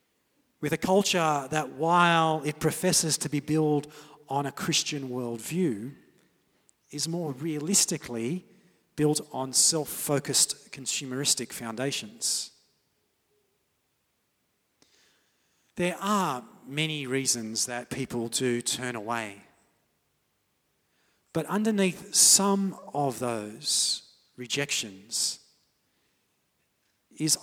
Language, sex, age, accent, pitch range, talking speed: English, male, 40-59, Australian, 135-170 Hz, 85 wpm